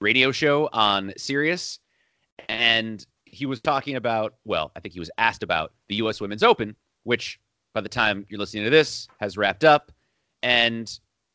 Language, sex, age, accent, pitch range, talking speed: English, male, 30-49, American, 110-145 Hz, 170 wpm